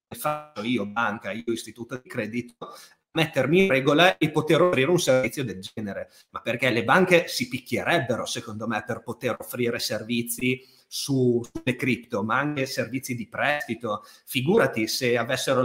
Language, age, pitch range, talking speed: Italian, 30-49, 115-150 Hz, 150 wpm